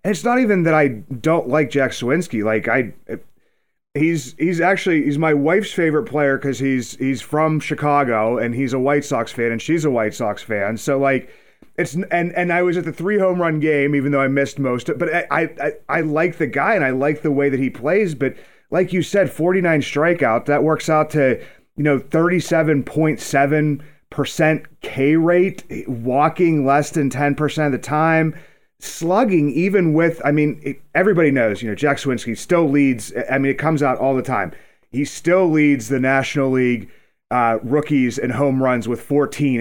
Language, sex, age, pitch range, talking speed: English, male, 30-49, 130-165 Hz, 200 wpm